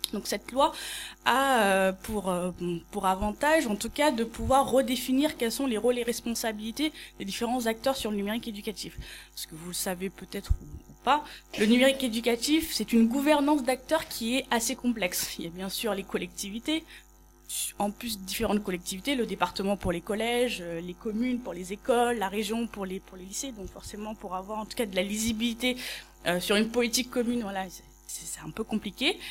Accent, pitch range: French, 195-255 Hz